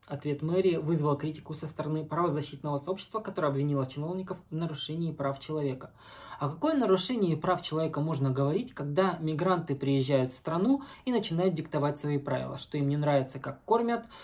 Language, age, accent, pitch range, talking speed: Russian, 20-39, native, 140-180 Hz, 160 wpm